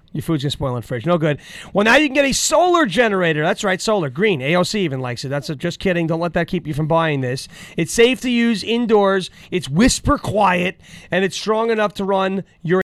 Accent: American